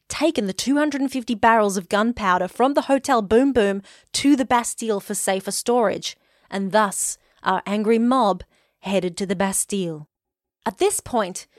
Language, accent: English, Australian